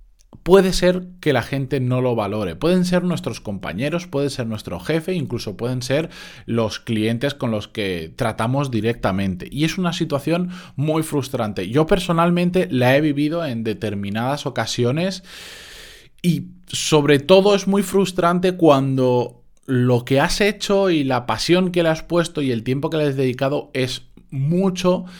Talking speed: 160 wpm